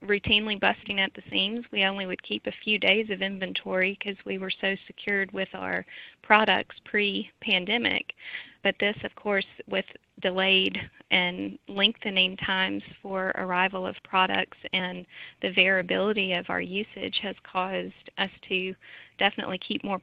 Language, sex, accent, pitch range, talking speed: English, female, American, 190-215 Hz, 145 wpm